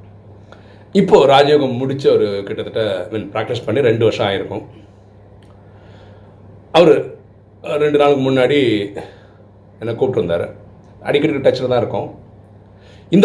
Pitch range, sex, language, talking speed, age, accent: 100-135 Hz, male, Tamil, 100 wpm, 40-59, native